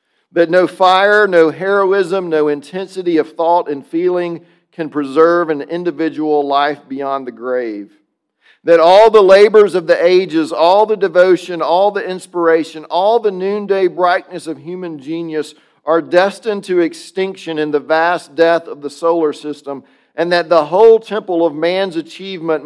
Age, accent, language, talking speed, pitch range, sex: 40-59, American, English, 155 wpm, 155-195 Hz, male